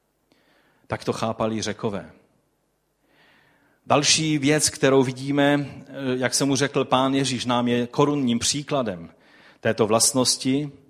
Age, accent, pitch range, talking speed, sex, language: 40-59, native, 120-160 Hz, 110 wpm, male, Czech